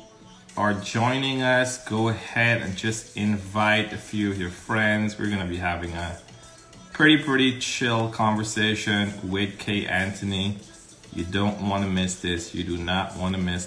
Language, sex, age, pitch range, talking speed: English, male, 30-49, 100-115 Hz, 165 wpm